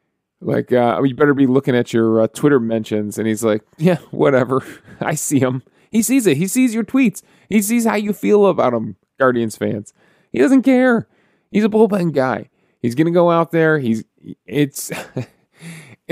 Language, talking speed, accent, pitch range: English, 180 wpm, American, 115-165 Hz